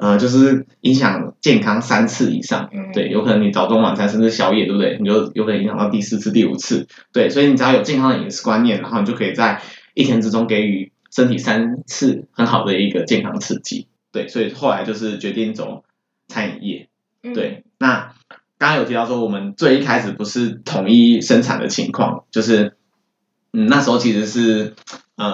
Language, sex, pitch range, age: Chinese, male, 110-135 Hz, 20-39